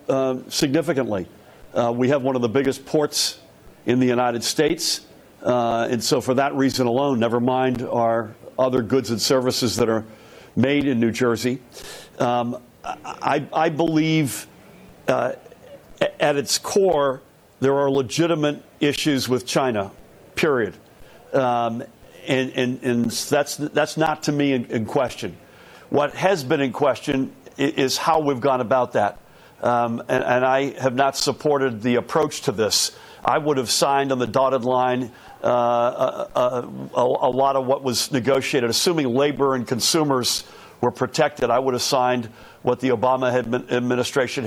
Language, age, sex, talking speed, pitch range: English, 60-79, male, 155 wpm, 125-145 Hz